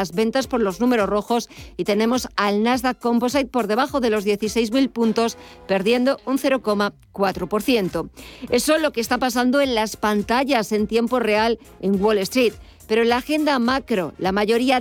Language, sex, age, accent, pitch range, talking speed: Spanish, female, 50-69, Spanish, 200-250 Hz, 170 wpm